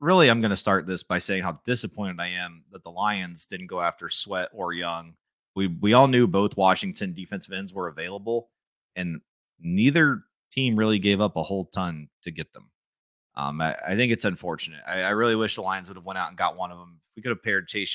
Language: English